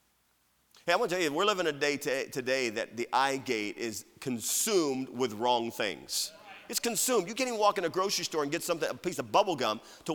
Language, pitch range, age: English, 135-185 Hz, 40-59